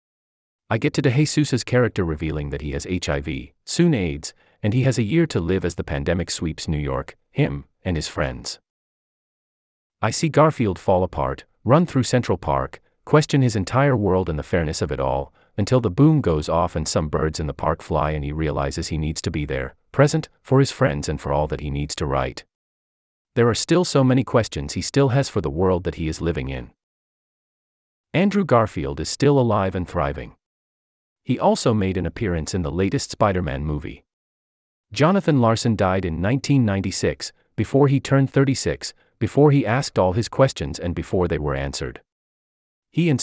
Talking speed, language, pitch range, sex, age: 190 wpm, English, 75-125 Hz, male, 30-49